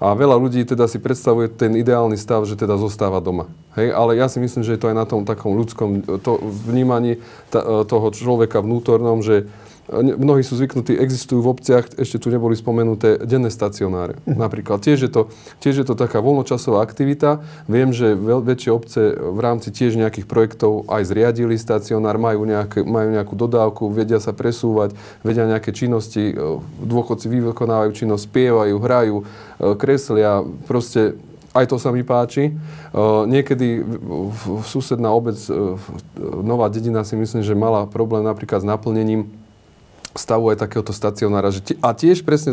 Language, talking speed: Slovak, 155 wpm